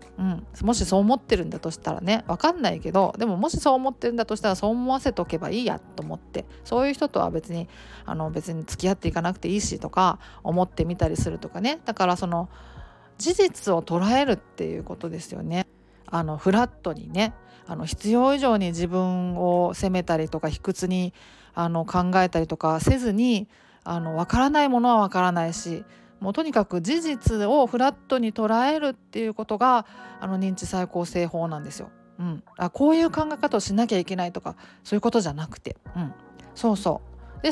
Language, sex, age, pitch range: Japanese, female, 40-59, 175-240 Hz